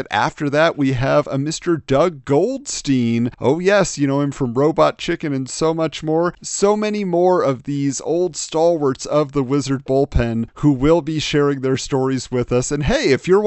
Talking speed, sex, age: 190 wpm, male, 40-59